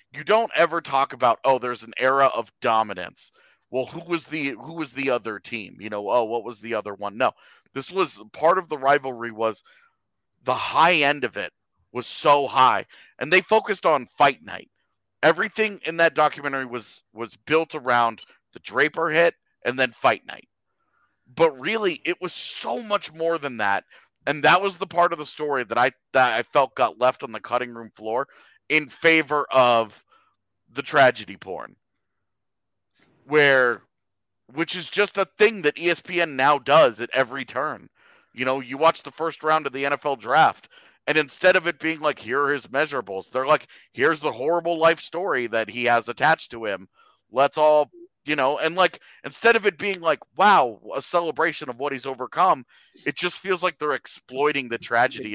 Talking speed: 190 wpm